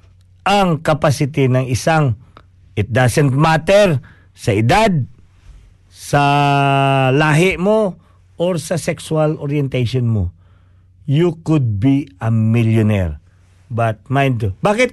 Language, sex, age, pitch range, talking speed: Filipino, male, 50-69, 110-160 Hz, 100 wpm